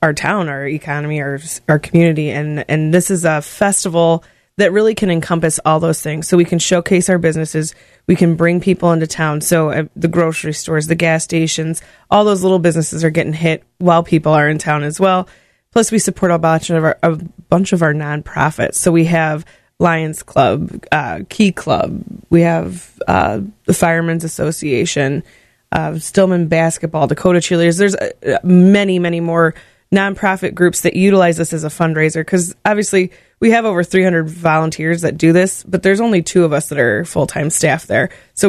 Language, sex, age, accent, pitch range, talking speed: English, female, 20-39, American, 160-180 Hz, 190 wpm